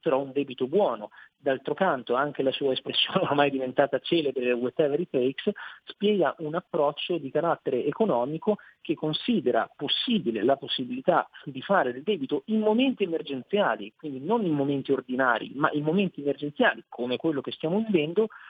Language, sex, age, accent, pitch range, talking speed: Italian, male, 40-59, native, 140-180 Hz, 155 wpm